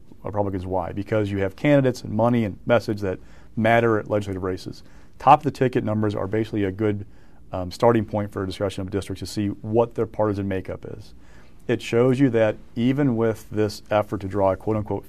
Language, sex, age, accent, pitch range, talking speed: English, male, 40-59, American, 100-115 Hz, 190 wpm